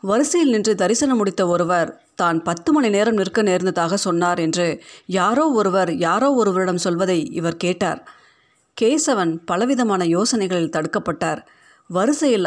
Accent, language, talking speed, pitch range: native, Tamil, 120 wpm, 180-240 Hz